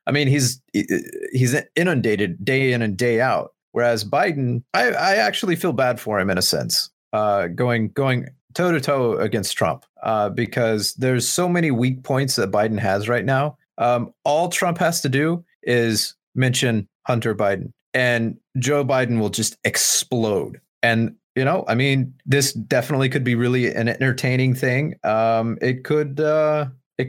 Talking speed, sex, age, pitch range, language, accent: 170 wpm, male, 30-49, 115-135 Hz, English, American